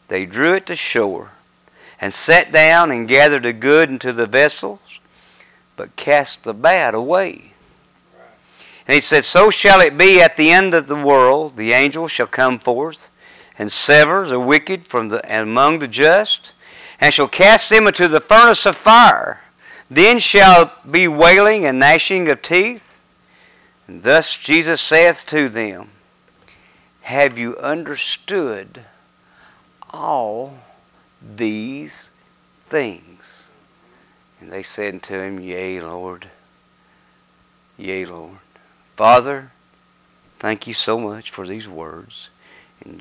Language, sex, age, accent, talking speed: English, male, 50-69, American, 130 wpm